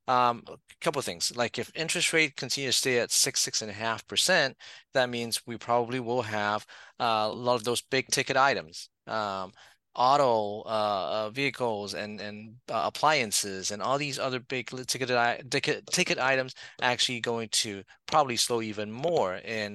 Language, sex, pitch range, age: English, male, 115-140 Hz, 30-49